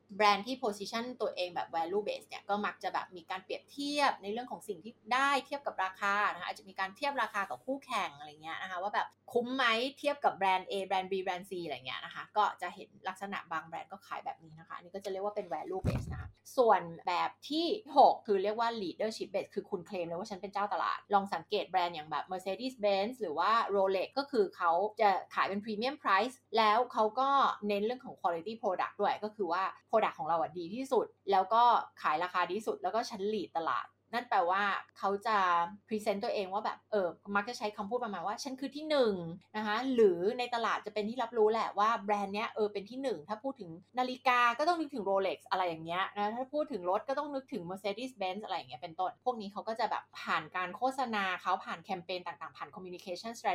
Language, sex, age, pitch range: Thai, female, 20-39, 190-250 Hz